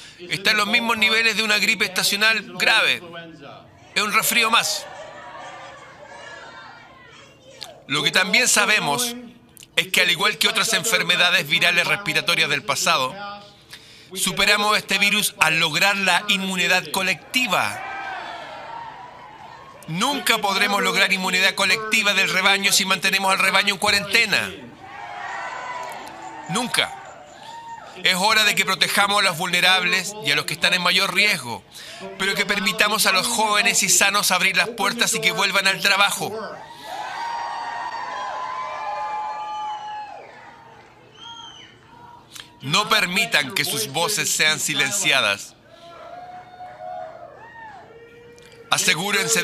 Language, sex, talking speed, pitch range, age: Spanish, male, 110 wpm, 175-220 Hz, 50-69